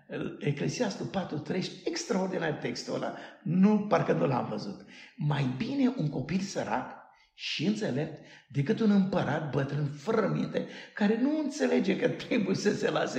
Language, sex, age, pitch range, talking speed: Romanian, male, 60-79, 145-210 Hz, 140 wpm